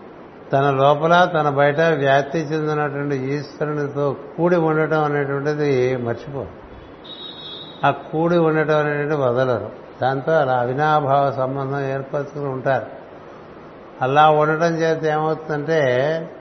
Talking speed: 95 wpm